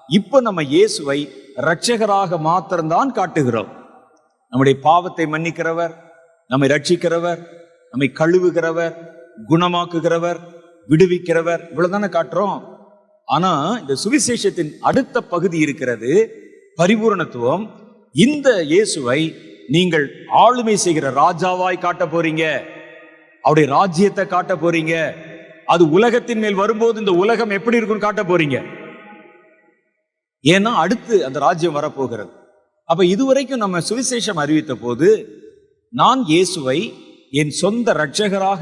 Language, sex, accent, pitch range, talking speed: Tamil, male, native, 160-210 Hz, 90 wpm